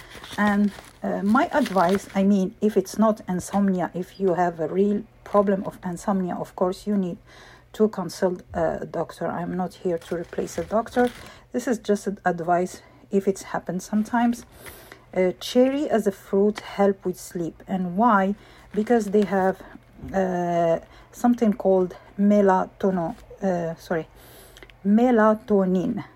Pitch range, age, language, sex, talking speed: 185-210 Hz, 50-69, English, female, 140 wpm